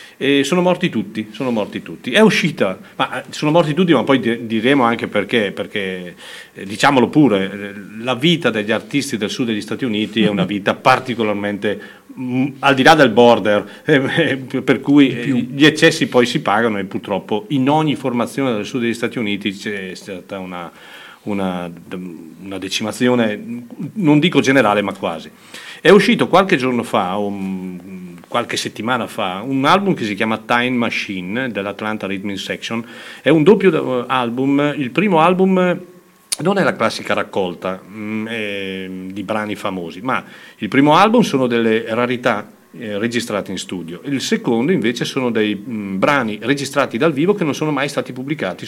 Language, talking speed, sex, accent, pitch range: Italian, 160 wpm, male, native, 105-140 Hz